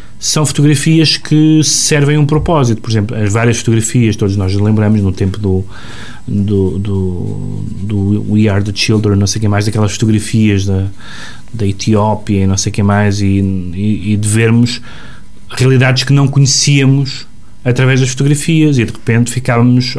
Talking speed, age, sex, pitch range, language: 160 wpm, 30-49, male, 105-135 Hz, Portuguese